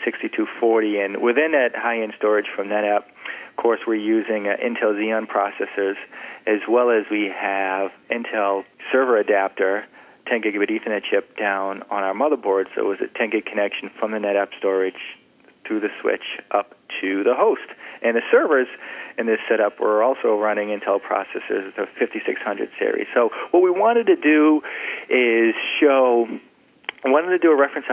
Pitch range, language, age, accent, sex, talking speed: 105-130 Hz, English, 40-59, American, male, 165 wpm